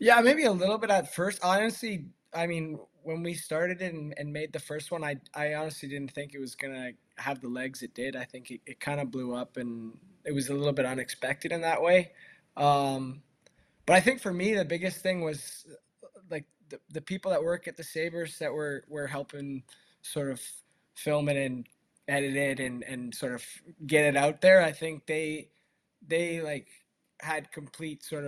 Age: 20-39